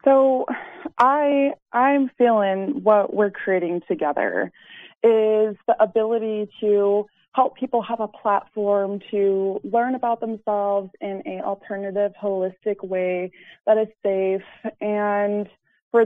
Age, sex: 20-39, female